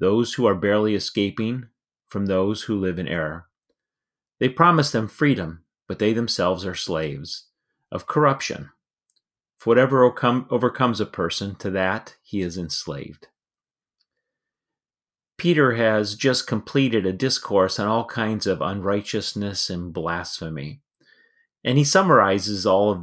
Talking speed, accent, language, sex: 130 wpm, American, English, male